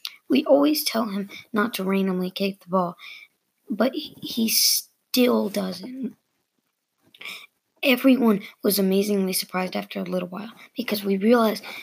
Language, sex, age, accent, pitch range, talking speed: English, female, 20-39, American, 190-225 Hz, 125 wpm